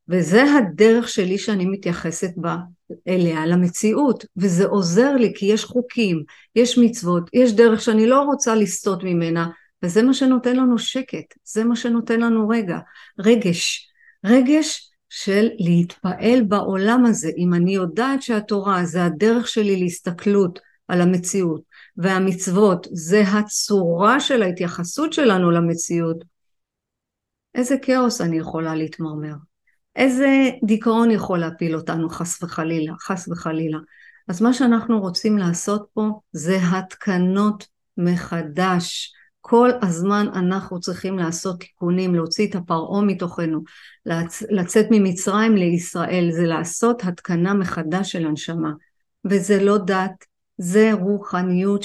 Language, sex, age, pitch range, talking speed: Hebrew, female, 50-69, 175-220 Hz, 120 wpm